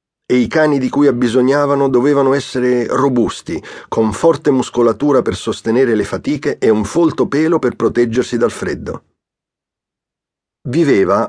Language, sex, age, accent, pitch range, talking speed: Italian, male, 40-59, native, 110-140 Hz, 135 wpm